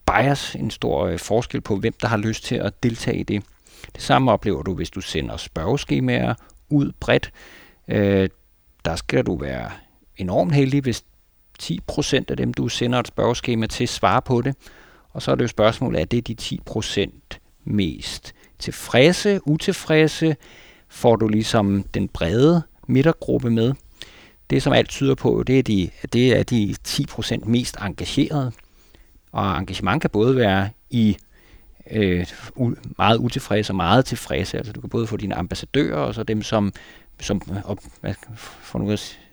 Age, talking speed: 60-79, 155 wpm